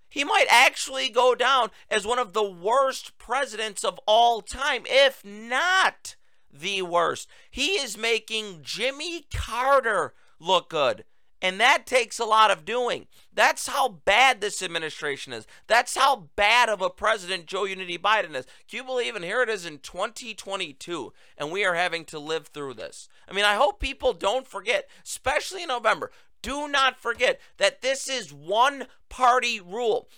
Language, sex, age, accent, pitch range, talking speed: English, male, 40-59, American, 180-255 Hz, 165 wpm